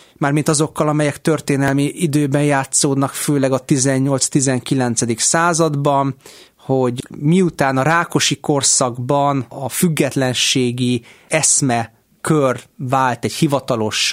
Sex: male